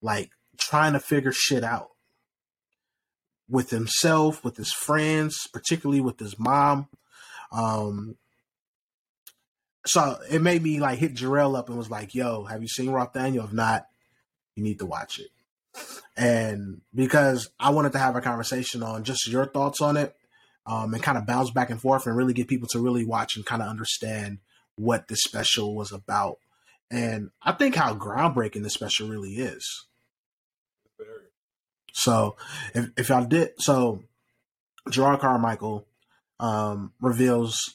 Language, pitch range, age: English, 110-135 Hz, 20-39